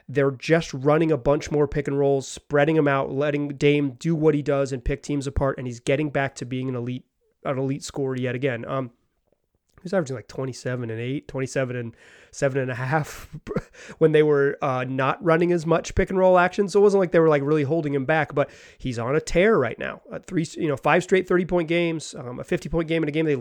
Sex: male